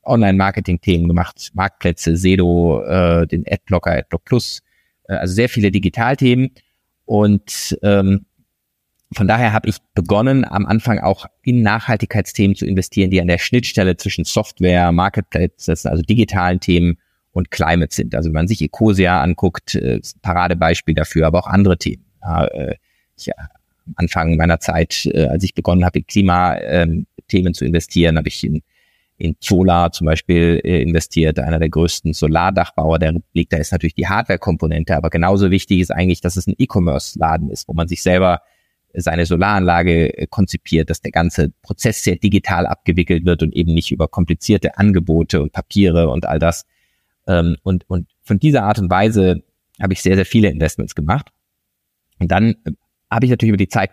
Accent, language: German, German